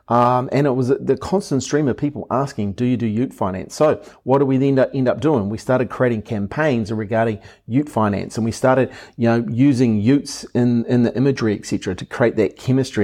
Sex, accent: male, Australian